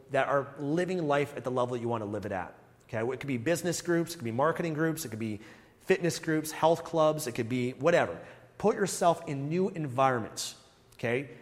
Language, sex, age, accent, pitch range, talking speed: English, male, 30-49, American, 130-170 Hz, 220 wpm